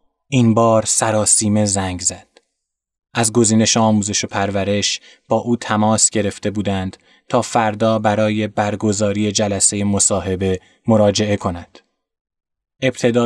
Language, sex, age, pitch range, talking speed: Persian, male, 20-39, 105-120 Hz, 115 wpm